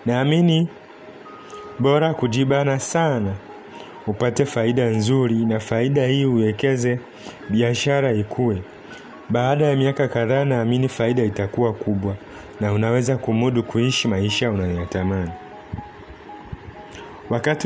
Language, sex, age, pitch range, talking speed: Swahili, male, 30-49, 105-135 Hz, 95 wpm